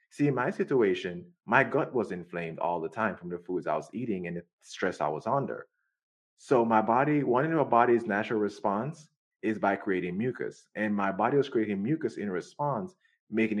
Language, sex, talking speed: English, male, 200 wpm